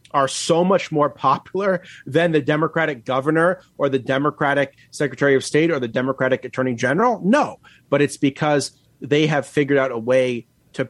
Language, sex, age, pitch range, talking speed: English, male, 30-49, 125-155 Hz, 170 wpm